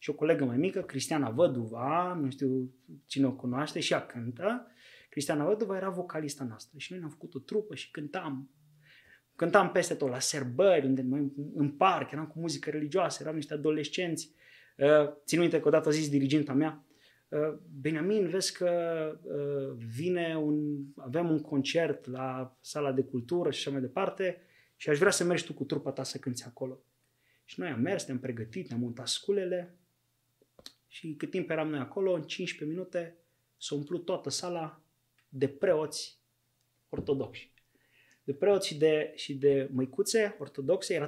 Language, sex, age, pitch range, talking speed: Romanian, male, 20-39, 135-180 Hz, 165 wpm